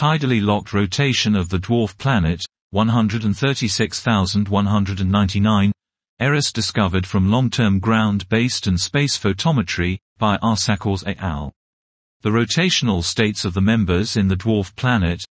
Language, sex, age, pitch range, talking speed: English, male, 40-59, 95-120 Hz, 115 wpm